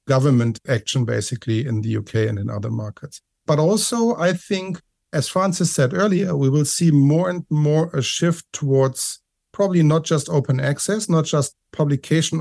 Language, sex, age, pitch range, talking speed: English, male, 50-69, 135-160 Hz, 170 wpm